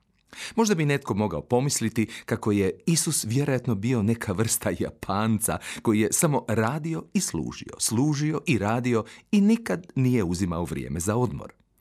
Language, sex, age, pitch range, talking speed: Croatian, male, 40-59, 100-150 Hz, 145 wpm